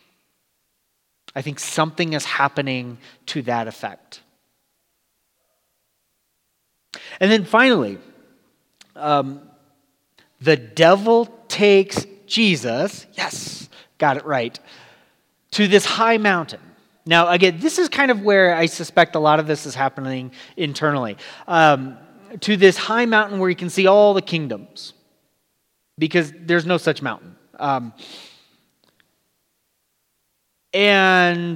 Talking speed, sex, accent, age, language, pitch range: 110 wpm, male, American, 30-49, English, 150-195 Hz